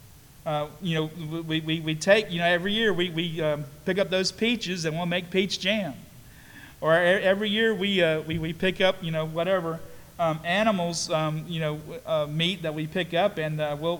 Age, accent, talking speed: 40-59, American, 210 wpm